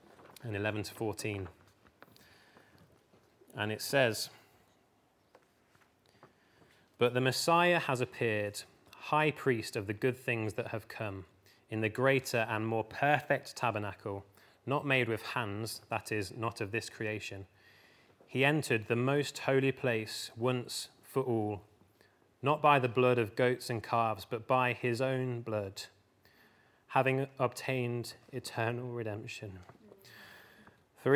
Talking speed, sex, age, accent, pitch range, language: 125 wpm, male, 30-49, British, 110-135 Hz, English